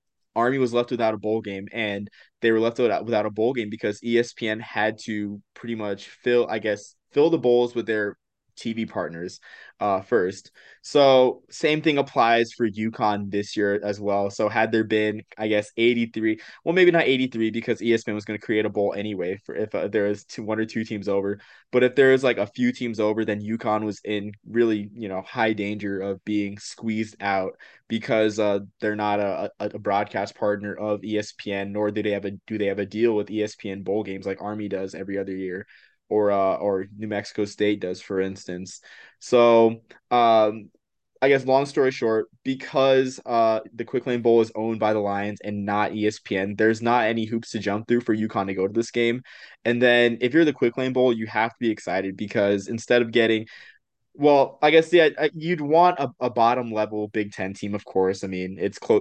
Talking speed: 210 wpm